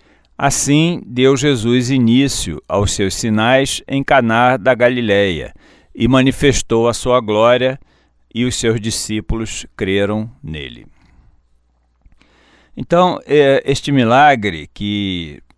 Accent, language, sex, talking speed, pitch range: Brazilian, Portuguese, male, 100 wpm, 90-125 Hz